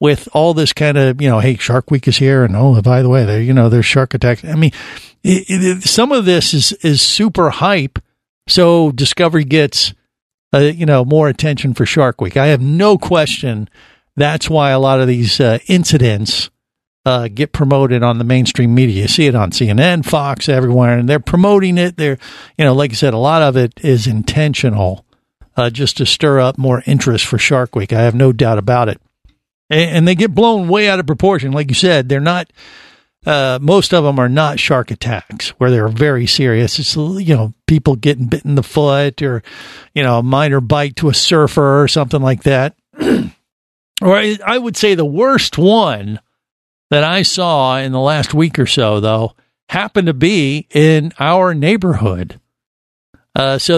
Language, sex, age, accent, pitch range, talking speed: English, male, 50-69, American, 125-160 Hz, 195 wpm